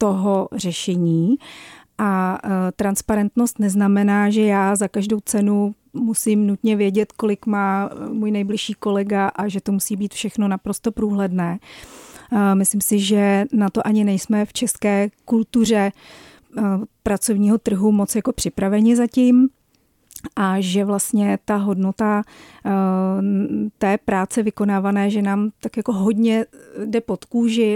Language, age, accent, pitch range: Czech, 40-59, native, 200-220 Hz